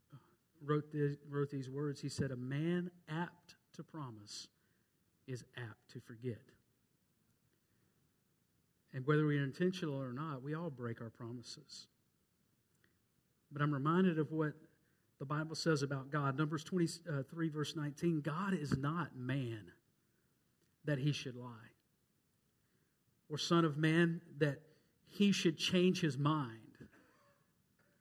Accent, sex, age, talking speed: American, male, 50-69, 125 wpm